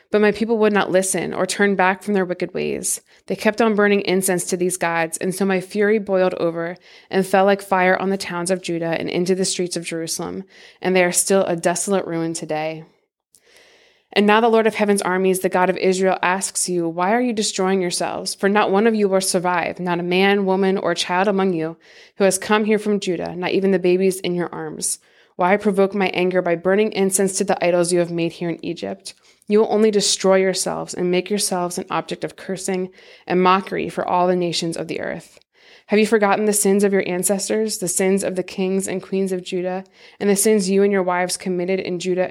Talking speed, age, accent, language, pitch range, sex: 225 wpm, 20-39, American, English, 180-200 Hz, female